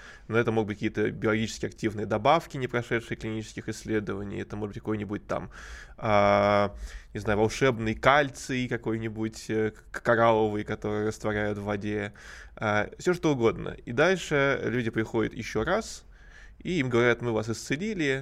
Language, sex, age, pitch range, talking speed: Russian, male, 20-39, 110-120 Hz, 140 wpm